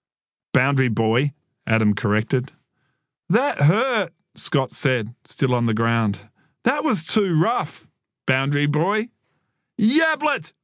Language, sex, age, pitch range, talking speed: English, male, 40-59, 120-165 Hz, 105 wpm